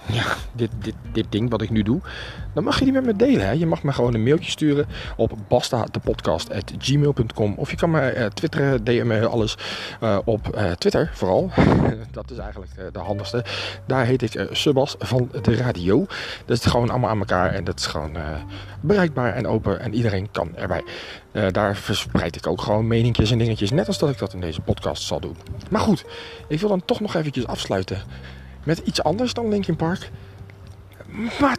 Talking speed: 200 wpm